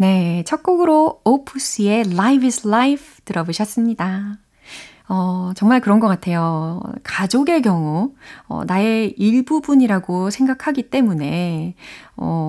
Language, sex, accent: Korean, female, native